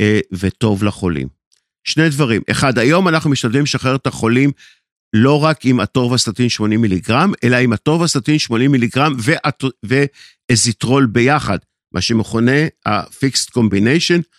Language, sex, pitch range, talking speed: Hebrew, male, 110-150 Hz, 120 wpm